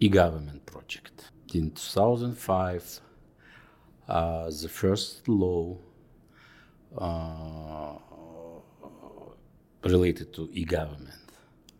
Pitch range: 75-85 Hz